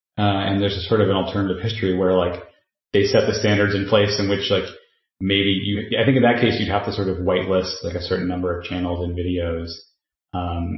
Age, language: 30-49, English